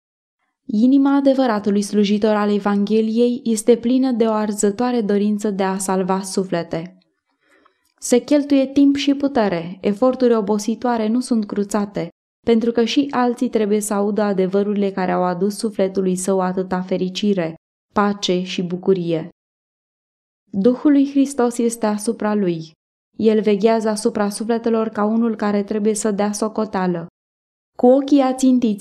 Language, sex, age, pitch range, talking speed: Romanian, female, 20-39, 205-245 Hz, 130 wpm